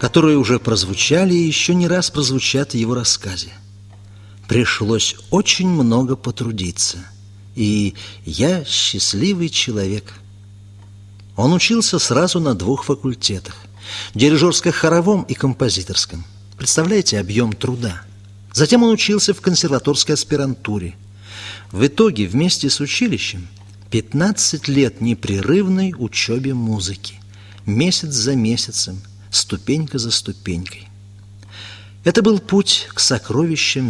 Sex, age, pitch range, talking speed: male, 50-69, 100-150 Hz, 105 wpm